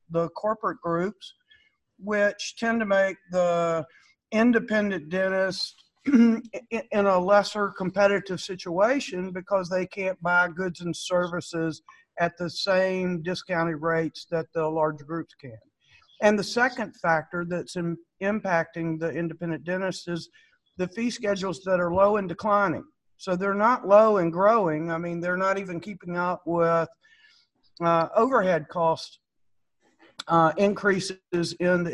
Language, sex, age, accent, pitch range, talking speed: English, male, 60-79, American, 165-200 Hz, 135 wpm